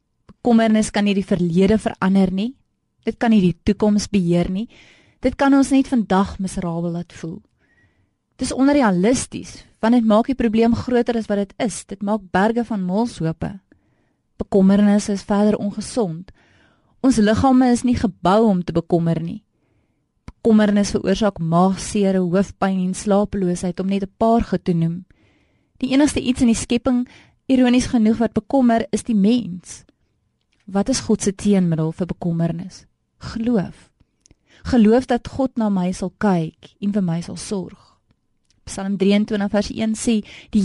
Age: 20-39